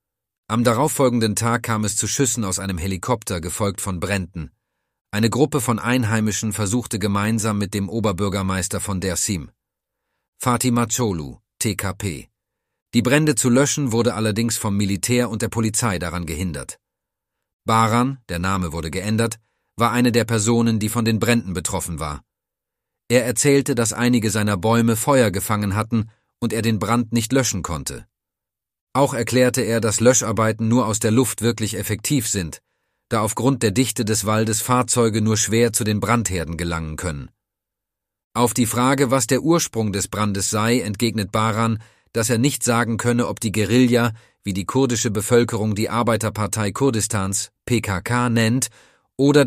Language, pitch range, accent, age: German, 100-120 Hz, German, 40-59